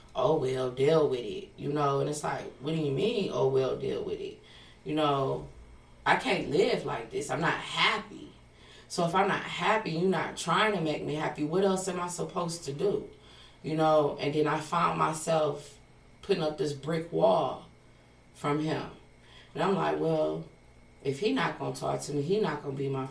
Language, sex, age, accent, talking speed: English, female, 20-39, American, 210 wpm